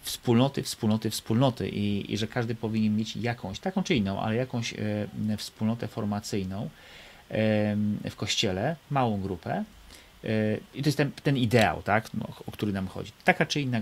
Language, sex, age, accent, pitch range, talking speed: Polish, male, 30-49, native, 105-130 Hz, 150 wpm